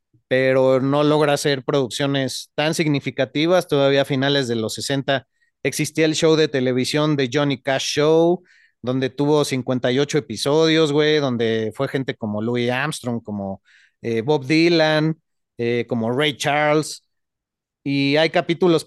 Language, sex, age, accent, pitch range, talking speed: Spanish, male, 30-49, Mexican, 130-160 Hz, 140 wpm